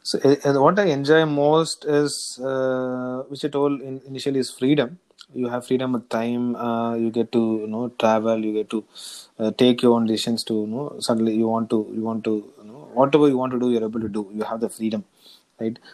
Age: 20-39